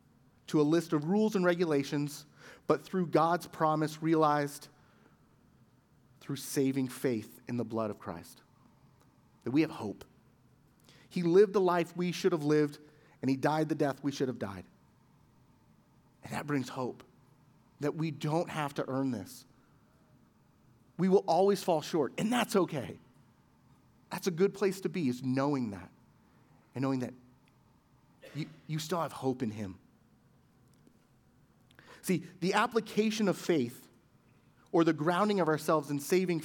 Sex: male